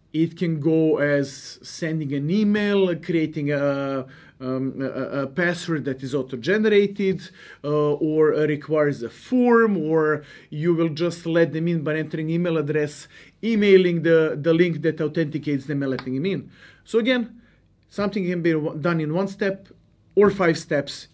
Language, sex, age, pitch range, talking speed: English, male, 40-59, 145-205 Hz, 150 wpm